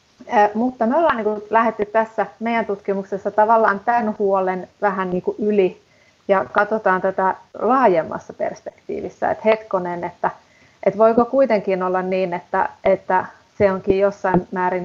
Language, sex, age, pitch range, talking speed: Finnish, female, 30-49, 185-215 Hz, 135 wpm